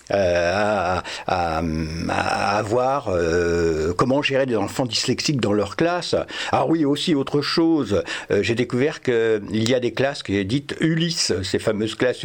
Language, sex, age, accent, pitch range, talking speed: French, male, 60-79, French, 110-155 Hz, 155 wpm